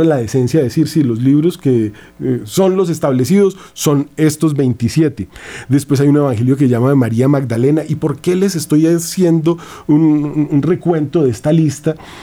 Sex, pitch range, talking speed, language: male, 130-165 Hz, 175 wpm, Spanish